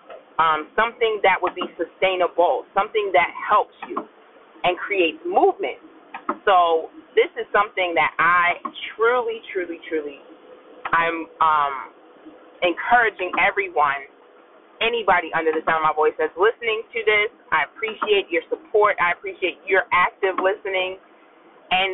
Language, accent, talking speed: English, American, 130 wpm